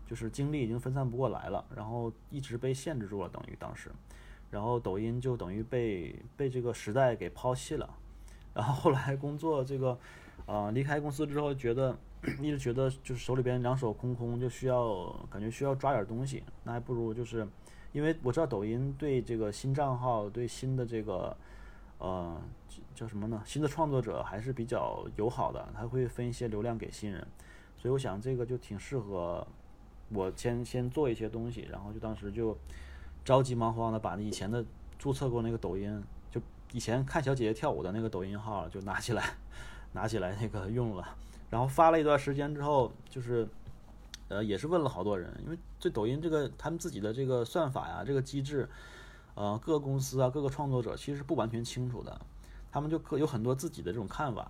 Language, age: Chinese, 20-39